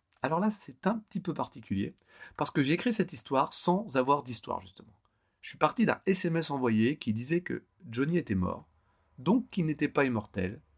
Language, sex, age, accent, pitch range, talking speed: French, male, 40-59, French, 105-135 Hz, 190 wpm